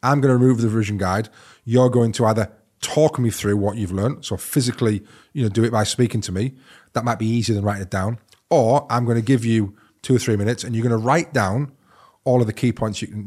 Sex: male